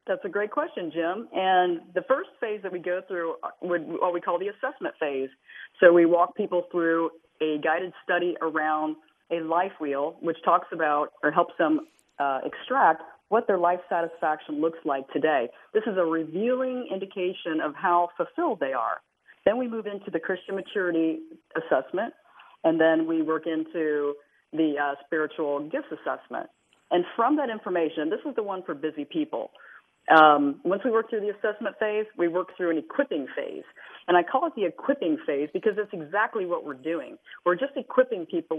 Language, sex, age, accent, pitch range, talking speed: English, female, 40-59, American, 160-210 Hz, 180 wpm